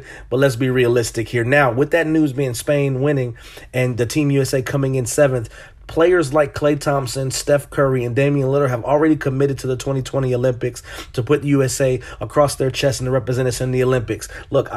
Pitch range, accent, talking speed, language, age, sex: 125-145 Hz, American, 205 wpm, English, 30-49, male